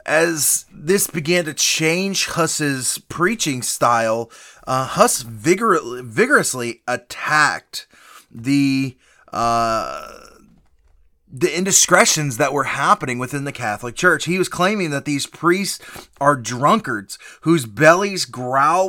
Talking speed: 110 wpm